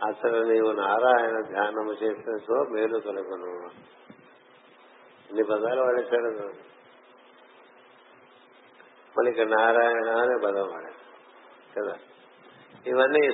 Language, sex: Telugu, male